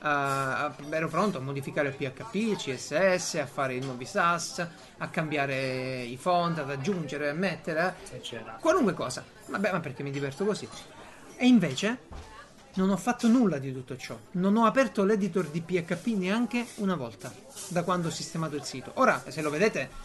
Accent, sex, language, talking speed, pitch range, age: native, male, Italian, 175 wpm, 145-195 Hz, 30-49